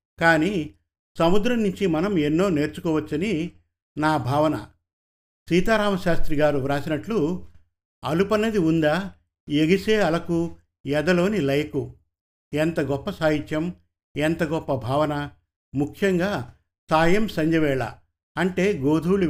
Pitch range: 125-175 Hz